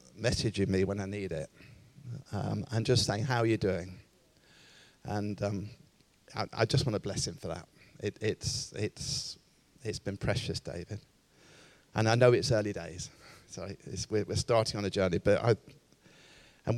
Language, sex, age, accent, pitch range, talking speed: English, male, 40-59, British, 100-120 Hz, 165 wpm